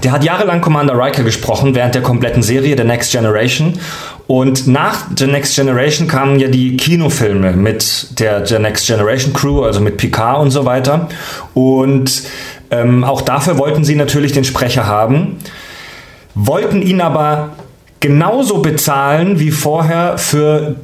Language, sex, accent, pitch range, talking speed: German, male, German, 125-155 Hz, 150 wpm